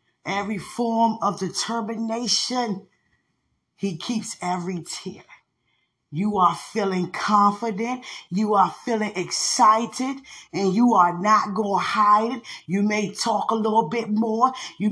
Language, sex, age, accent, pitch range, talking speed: English, female, 20-39, American, 205-250 Hz, 125 wpm